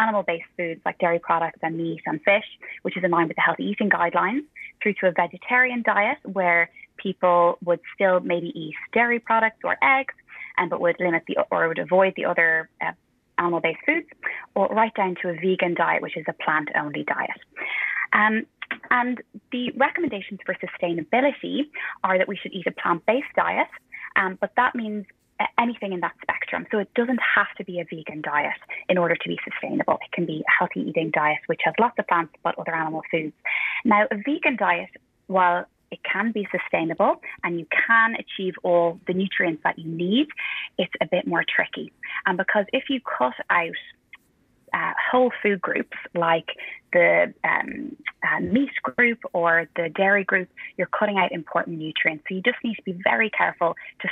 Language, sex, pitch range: English, female, 170-225 Hz